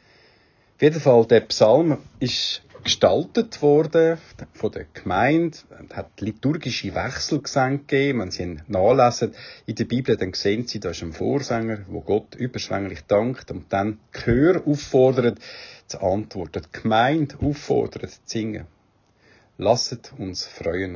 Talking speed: 135 wpm